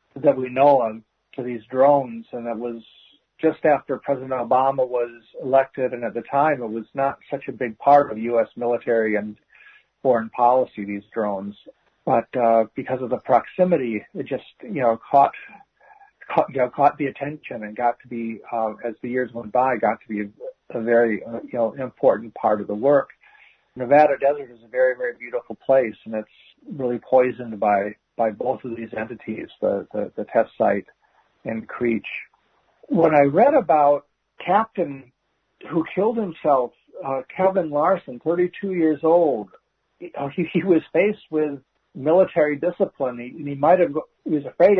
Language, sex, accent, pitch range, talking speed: English, male, American, 120-160 Hz, 175 wpm